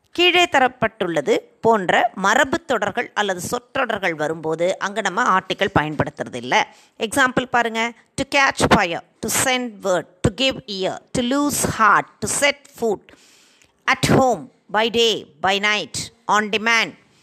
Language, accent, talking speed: Tamil, native, 130 wpm